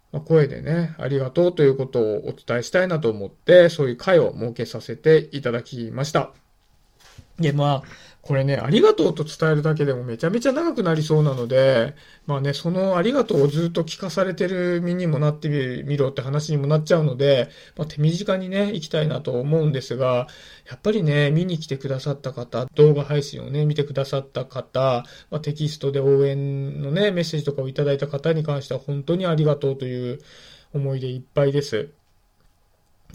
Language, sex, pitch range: Japanese, male, 135-160 Hz